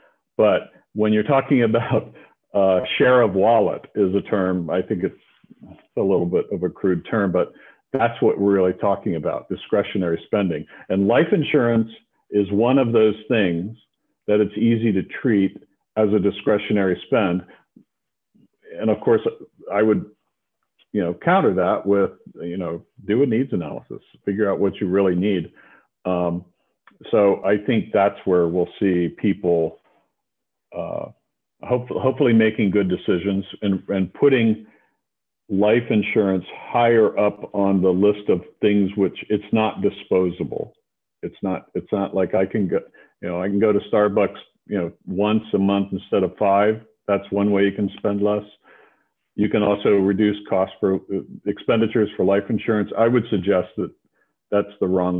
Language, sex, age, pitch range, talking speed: English, male, 50-69, 95-110 Hz, 160 wpm